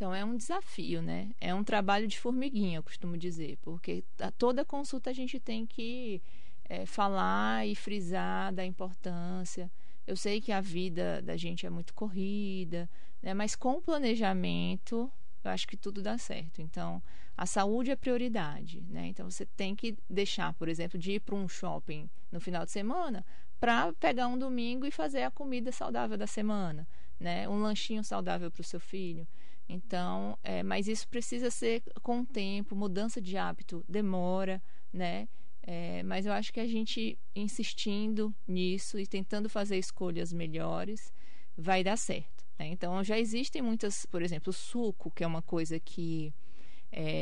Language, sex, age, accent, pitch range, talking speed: Spanish, female, 20-39, Brazilian, 175-225 Hz, 170 wpm